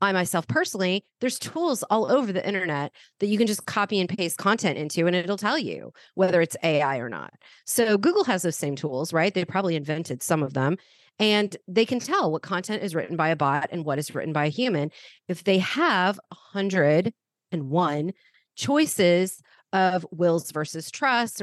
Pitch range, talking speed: 165-230 Hz, 190 wpm